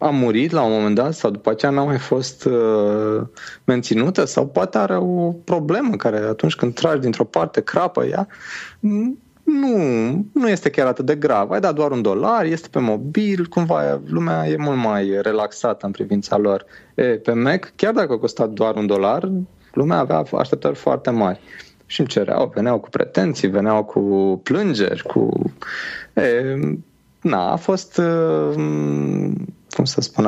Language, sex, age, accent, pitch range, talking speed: Romanian, male, 30-49, native, 100-145 Hz, 165 wpm